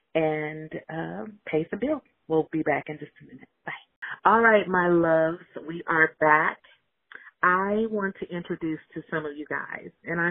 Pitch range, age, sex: 155-185 Hz, 40-59, female